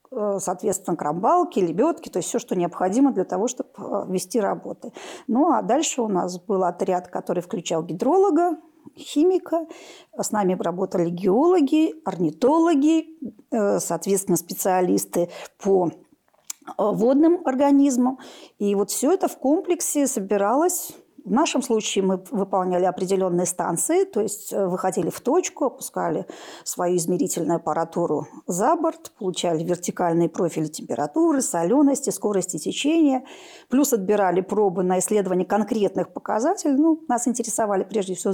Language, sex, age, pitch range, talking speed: Russian, female, 40-59, 185-290 Hz, 120 wpm